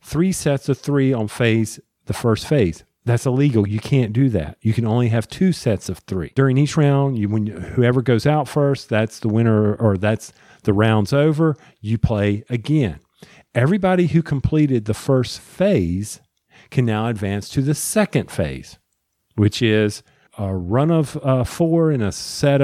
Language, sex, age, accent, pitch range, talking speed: English, male, 40-59, American, 110-145 Hz, 175 wpm